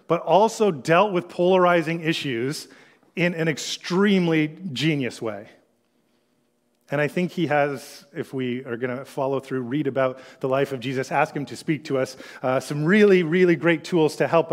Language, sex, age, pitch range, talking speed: English, male, 30-49, 145-185 Hz, 180 wpm